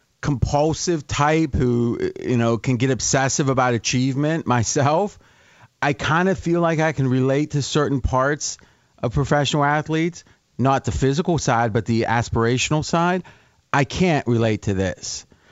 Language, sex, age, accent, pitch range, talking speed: English, male, 40-59, American, 115-140 Hz, 145 wpm